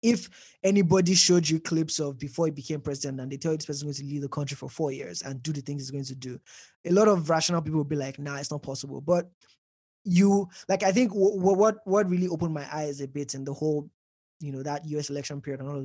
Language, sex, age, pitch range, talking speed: English, male, 20-39, 140-170 Hz, 275 wpm